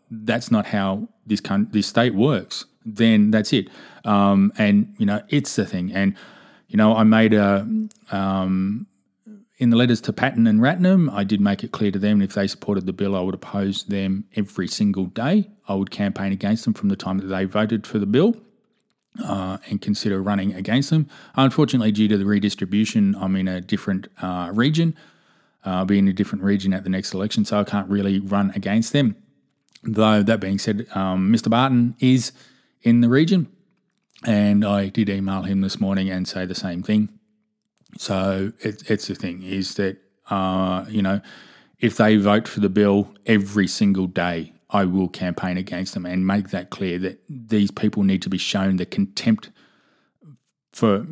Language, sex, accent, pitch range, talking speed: English, male, Australian, 95-130 Hz, 190 wpm